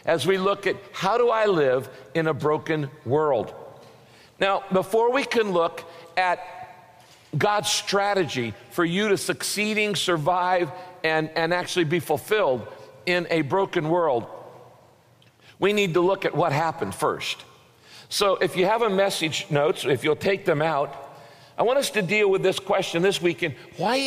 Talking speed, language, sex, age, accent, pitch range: 160 wpm, English, male, 50-69, American, 155-210 Hz